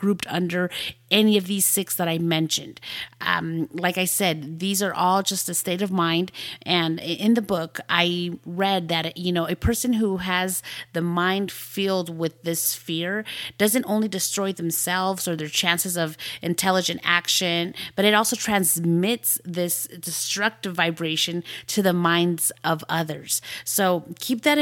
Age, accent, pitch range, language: 30-49, American, 175-210 Hz, English